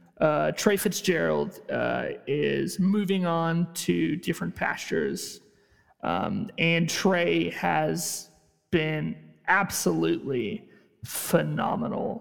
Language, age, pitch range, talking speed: English, 30-49, 165-195 Hz, 85 wpm